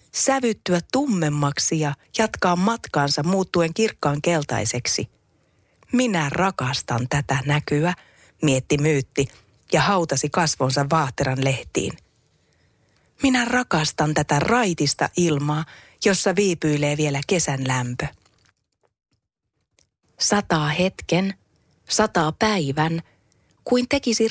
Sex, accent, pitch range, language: female, native, 140-195 Hz, Finnish